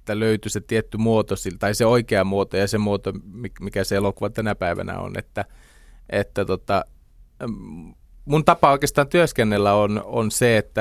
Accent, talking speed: native, 160 wpm